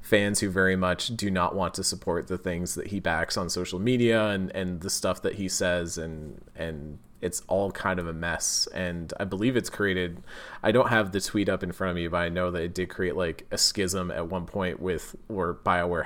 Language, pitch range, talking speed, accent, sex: English, 90-100 Hz, 235 wpm, American, male